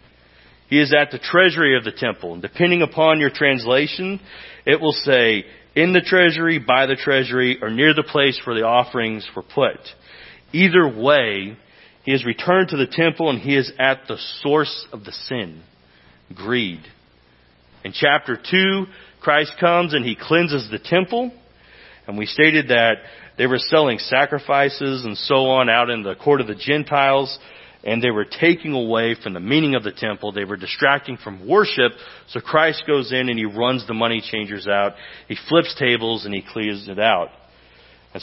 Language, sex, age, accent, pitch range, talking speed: English, male, 40-59, American, 105-150 Hz, 175 wpm